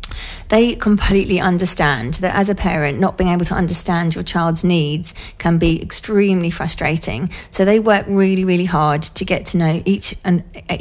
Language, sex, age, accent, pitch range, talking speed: English, female, 30-49, British, 160-190 Hz, 170 wpm